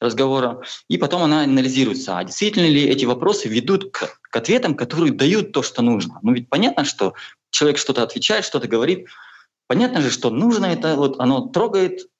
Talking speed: 175 wpm